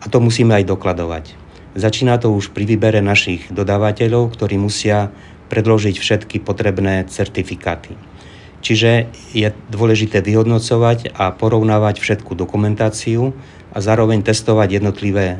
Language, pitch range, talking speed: Czech, 95-110 Hz, 115 wpm